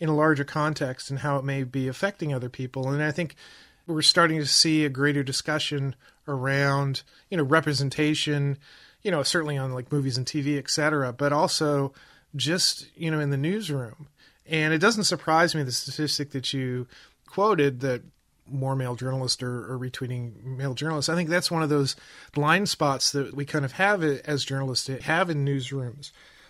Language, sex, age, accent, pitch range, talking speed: English, male, 30-49, American, 135-155 Hz, 185 wpm